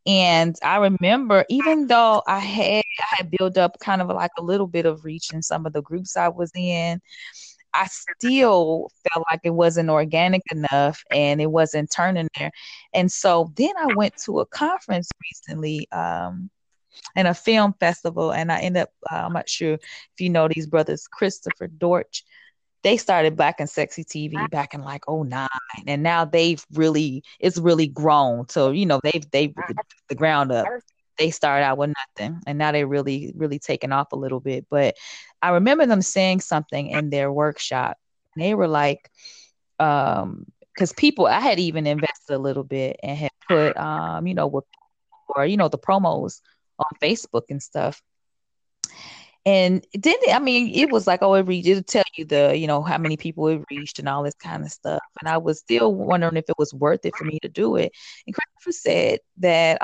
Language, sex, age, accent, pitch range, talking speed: English, female, 20-39, American, 150-190 Hz, 195 wpm